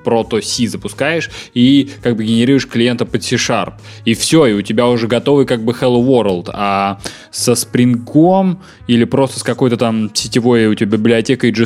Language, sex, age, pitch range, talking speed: Russian, male, 20-39, 110-140 Hz, 175 wpm